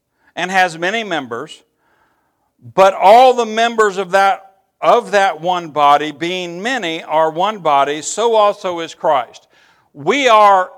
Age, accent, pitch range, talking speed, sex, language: 60-79, American, 160-210 Hz, 140 wpm, male, English